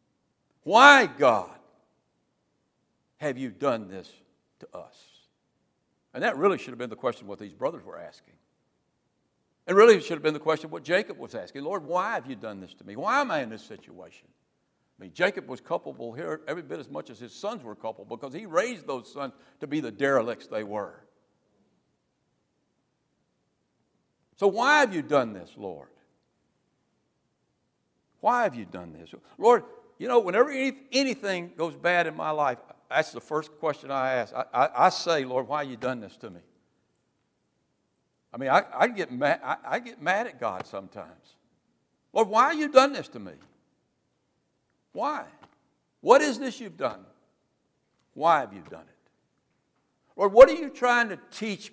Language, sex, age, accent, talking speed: English, male, 60-79, American, 170 wpm